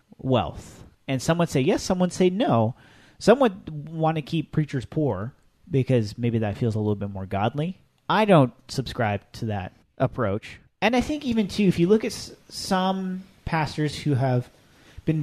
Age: 30-49